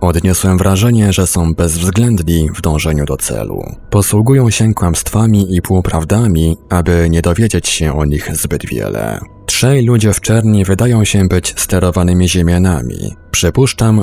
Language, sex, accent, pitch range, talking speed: Polish, male, native, 85-100 Hz, 135 wpm